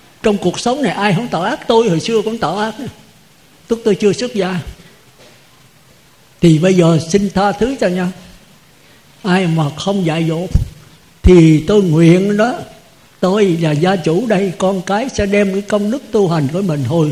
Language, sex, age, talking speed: Vietnamese, male, 60-79, 190 wpm